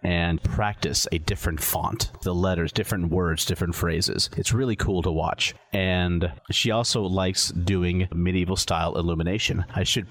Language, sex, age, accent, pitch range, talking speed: English, male, 30-49, American, 85-105 Hz, 155 wpm